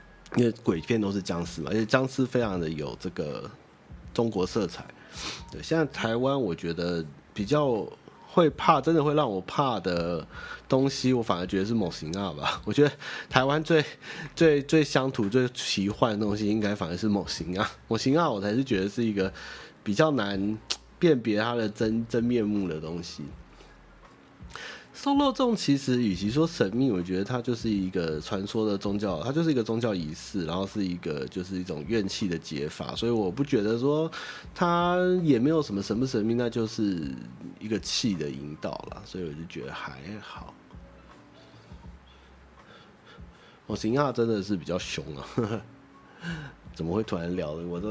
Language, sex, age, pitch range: Chinese, male, 30-49, 95-135 Hz